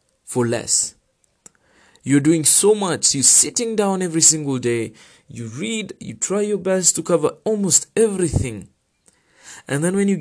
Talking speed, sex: 155 wpm, male